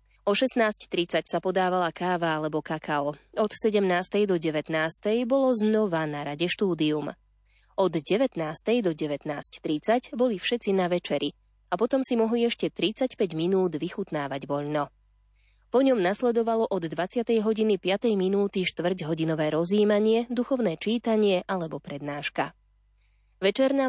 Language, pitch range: Slovak, 160-220 Hz